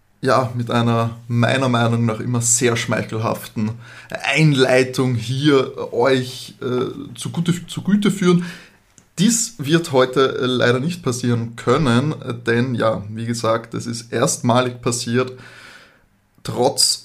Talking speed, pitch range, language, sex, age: 115 wpm, 120-140 Hz, German, male, 20-39